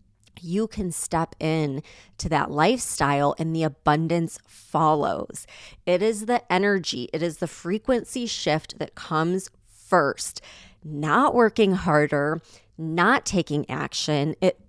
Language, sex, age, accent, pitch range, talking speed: English, female, 20-39, American, 155-195 Hz, 125 wpm